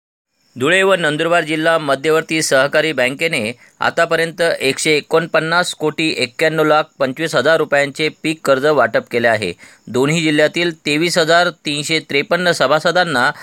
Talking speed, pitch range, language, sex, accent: 105 wpm, 140-165 Hz, Marathi, male, native